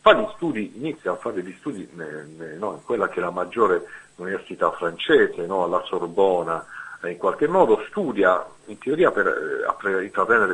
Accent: native